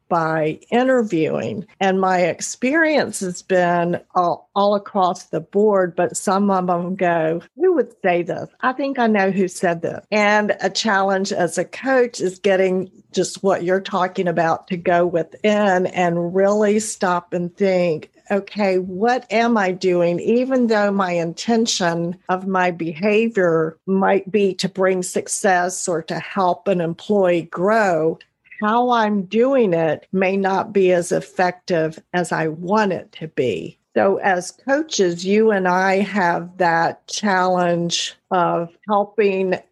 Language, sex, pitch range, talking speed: English, female, 175-200 Hz, 150 wpm